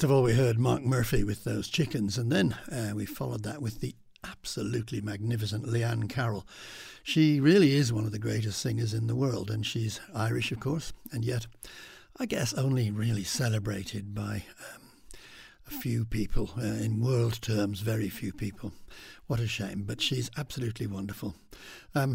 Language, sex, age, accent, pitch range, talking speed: English, male, 60-79, British, 105-125 Hz, 175 wpm